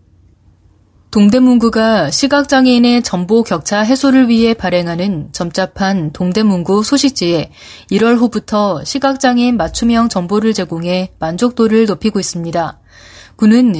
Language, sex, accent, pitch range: Korean, female, native, 185-240 Hz